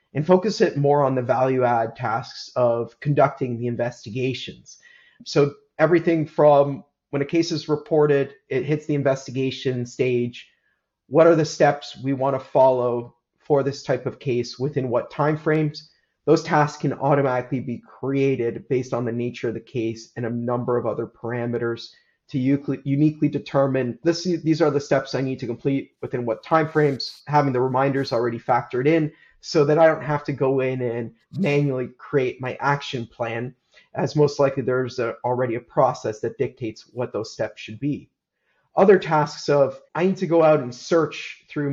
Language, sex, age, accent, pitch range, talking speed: English, male, 30-49, American, 125-150 Hz, 175 wpm